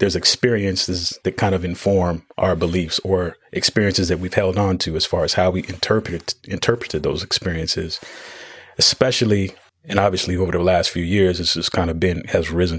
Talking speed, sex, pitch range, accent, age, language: 185 wpm, male, 90-100 Hz, American, 30-49, English